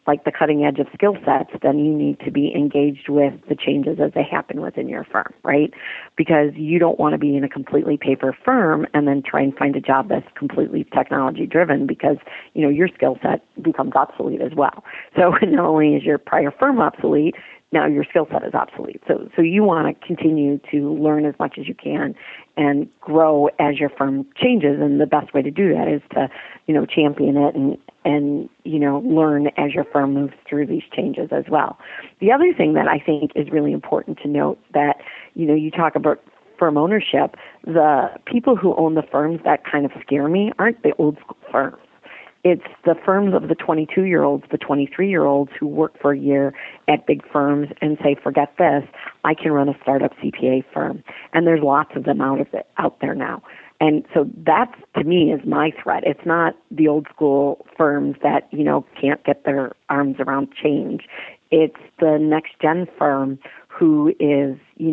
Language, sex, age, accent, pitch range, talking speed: English, female, 40-59, American, 140-160 Hz, 205 wpm